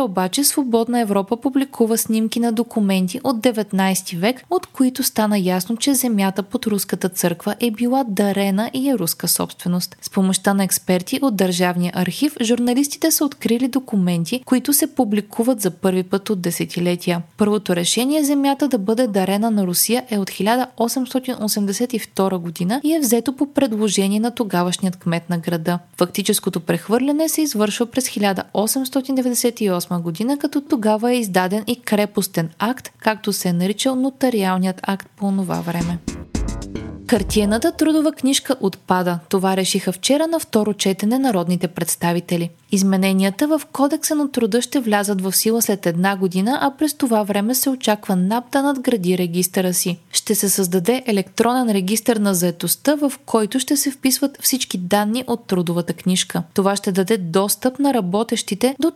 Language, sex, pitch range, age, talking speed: Bulgarian, female, 190-255 Hz, 20-39, 150 wpm